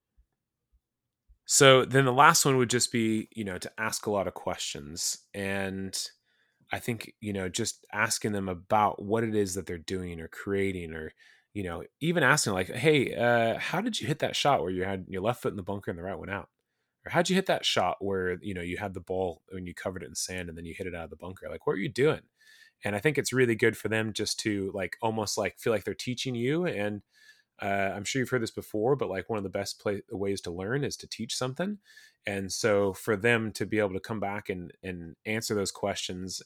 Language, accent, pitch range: English, American, 95-120 Hz